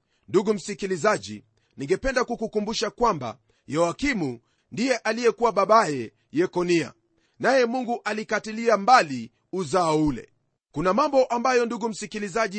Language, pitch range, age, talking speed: Swahili, 180-245 Hz, 40-59, 100 wpm